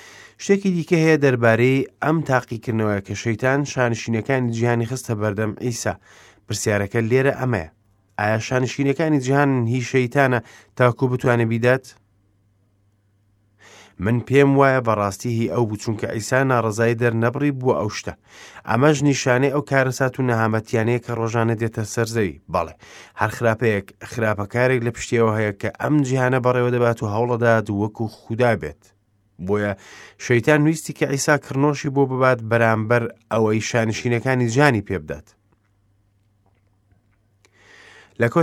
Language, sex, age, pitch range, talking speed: English, male, 30-49, 105-130 Hz, 125 wpm